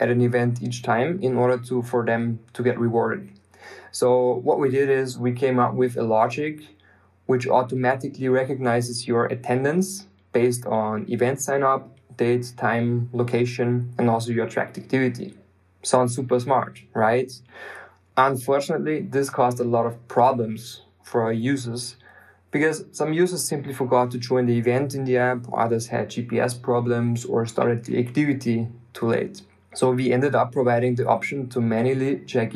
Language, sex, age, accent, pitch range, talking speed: English, male, 20-39, German, 120-130 Hz, 160 wpm